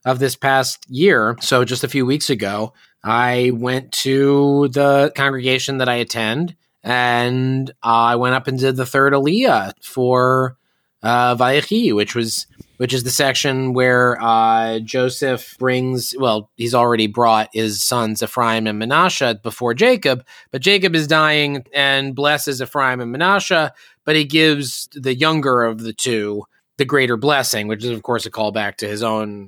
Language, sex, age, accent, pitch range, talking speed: English, male, 30-49, American, 120-160 Hz, 165 wpm